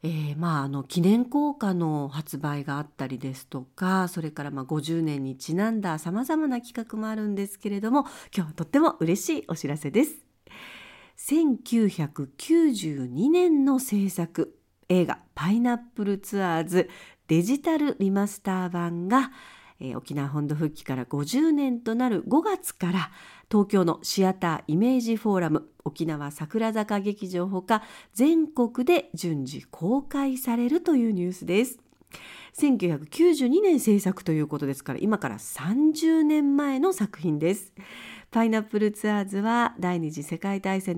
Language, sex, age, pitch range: Japanese, female, 50-69, 165-260 Hz